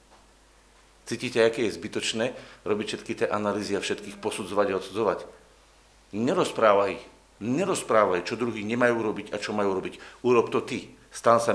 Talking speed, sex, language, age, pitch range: 145 wpm, male, Slovak, 50-69, 125-170 Hz